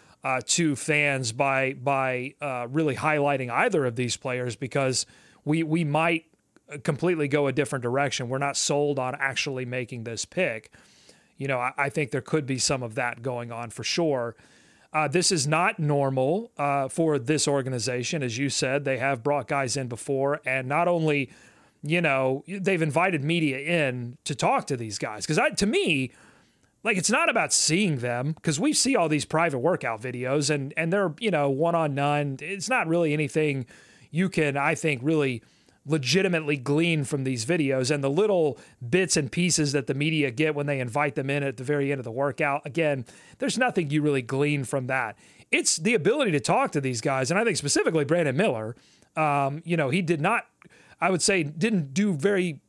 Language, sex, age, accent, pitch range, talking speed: English, male, 30-49, American, 135-165 Hz, 195 wpm